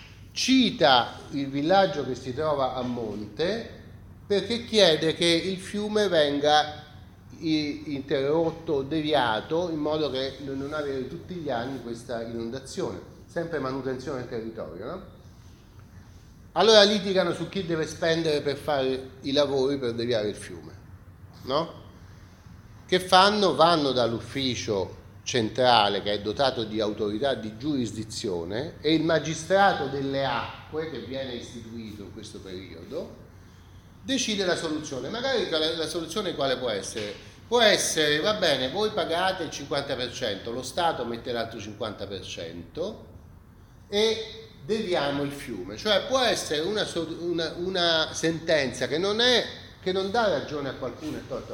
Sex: male